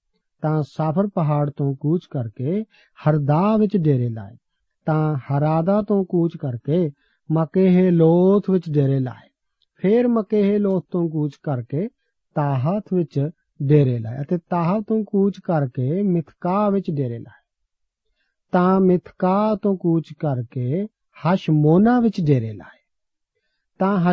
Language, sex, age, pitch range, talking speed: Punjabi, male, 50-69, 145-190 Hz, 55 wpm